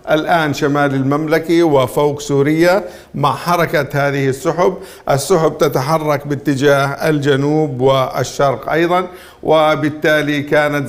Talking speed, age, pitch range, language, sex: 95 wpm, 50-69, 135-160 Hz, Arabic, male